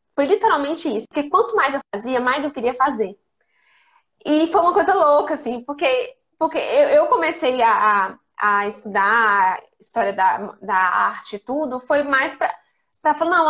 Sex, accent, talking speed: female, Brazilian, 170 wpm